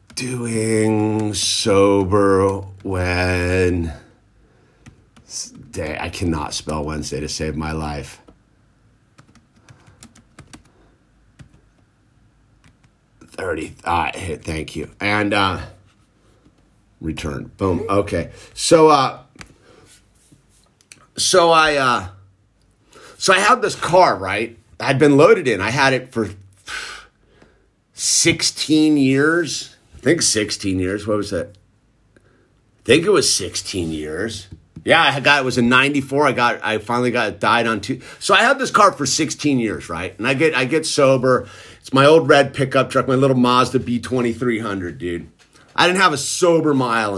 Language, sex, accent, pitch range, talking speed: English, male, American, 95-135 Hz, 135 wpm